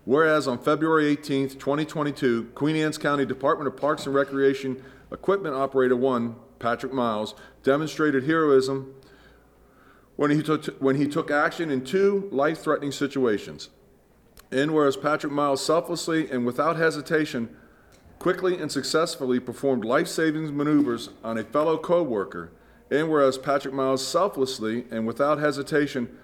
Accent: American